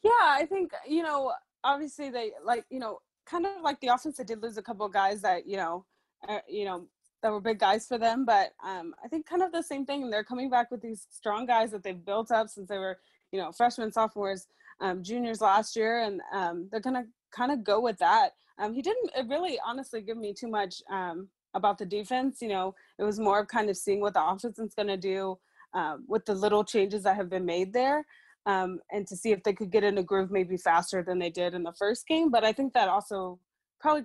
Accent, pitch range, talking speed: American, 195-250 Hz, 245 wpm